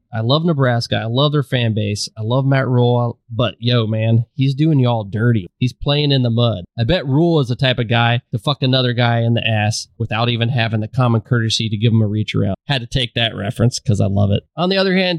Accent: American